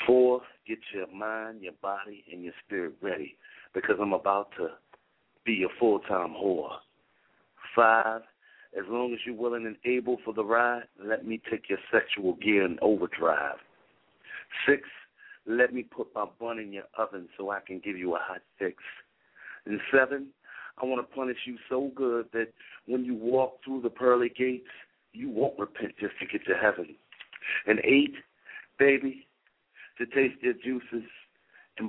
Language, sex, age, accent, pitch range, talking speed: English, male, 50-69, American, 100-125 Hz, 165 wpm